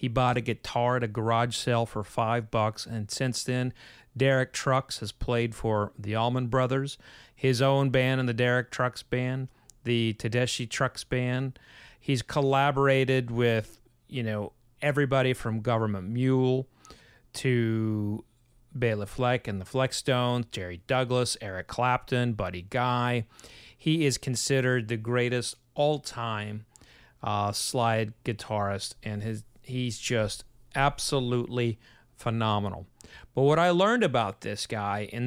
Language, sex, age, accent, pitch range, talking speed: English, male, 30-49, American, 110-130 Hz, 135 wpm